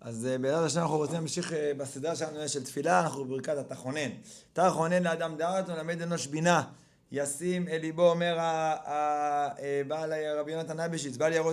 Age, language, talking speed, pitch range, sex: 30-49, Hebrew, 165 wpm, 155-195 Hz, male